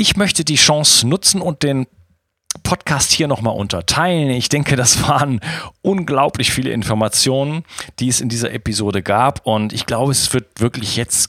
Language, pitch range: German, 100-135 Hz